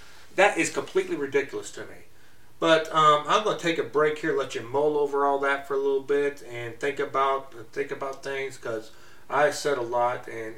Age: 30-49